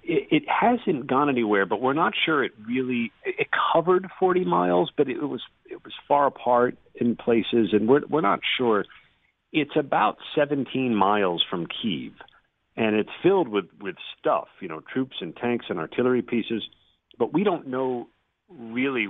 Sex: male